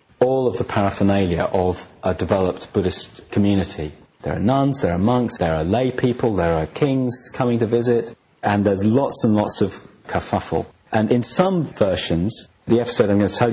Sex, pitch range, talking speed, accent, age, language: male, 95-120 Hz, 185 wpm, British, 40-59, English